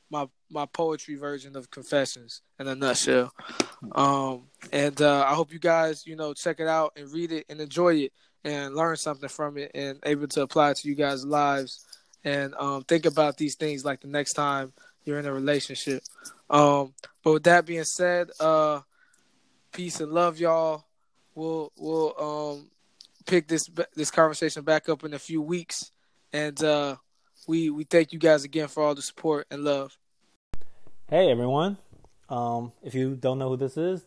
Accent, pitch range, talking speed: American, 120-155 Hz, 180 wpm